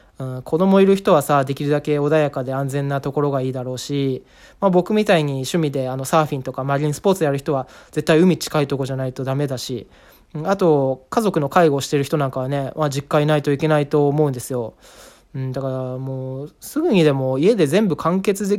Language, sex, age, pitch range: Japanese, male, 20-39, 135-175 Hz